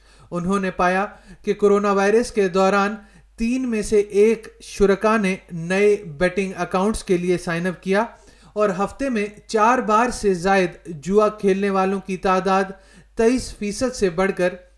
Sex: male